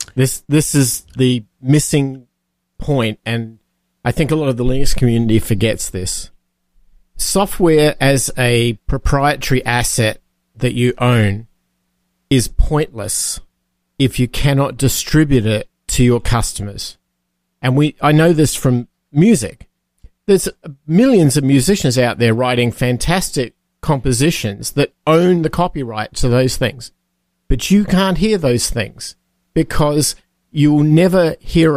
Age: 50-69